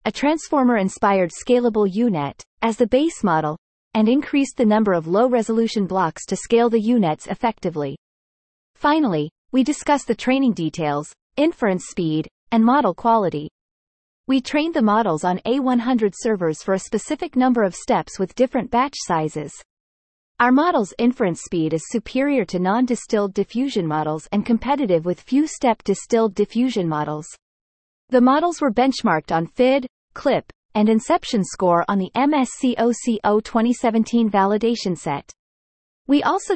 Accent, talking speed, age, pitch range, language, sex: American, 135 wpm, 30-49, 180-250 Hz, English, female